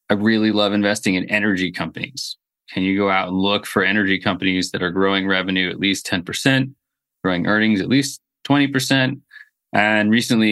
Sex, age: male, 30-49